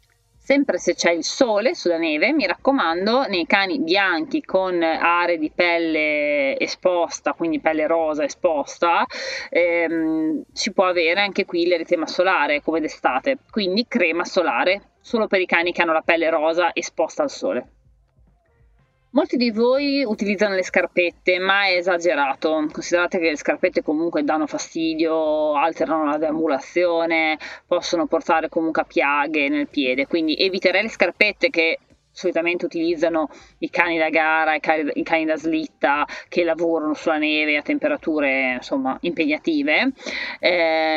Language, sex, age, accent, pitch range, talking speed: Italian, female, 30-49, native, 160-260 Hz, 140 wpm